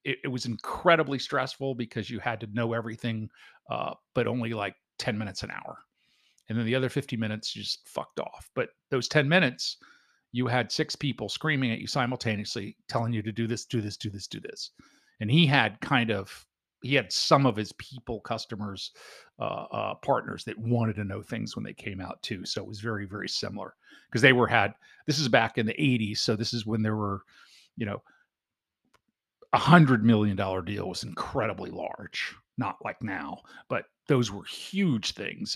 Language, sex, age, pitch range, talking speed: English, male, 40-59, 110-130 Hz, 195 wpm